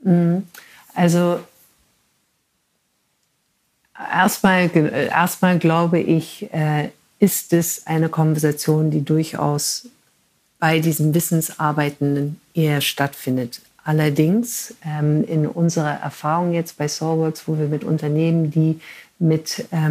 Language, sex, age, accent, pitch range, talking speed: German, female, 50-69, German, 155-180 Hz, 85 wpm